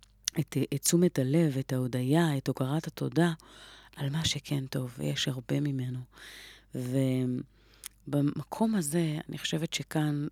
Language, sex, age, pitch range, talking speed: Hebrew, female, 30-49, 130-160 Hz, 120 wpm